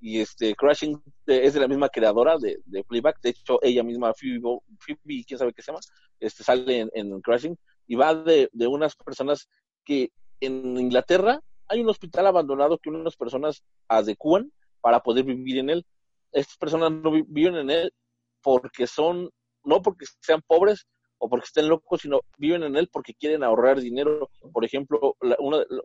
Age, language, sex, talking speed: 40-59, Spanish, male, 175 wpm